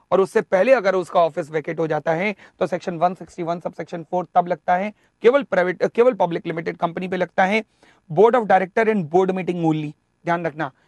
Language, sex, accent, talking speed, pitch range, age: English, male, Indian, 200 wpm, 170-205 Hz, 30-49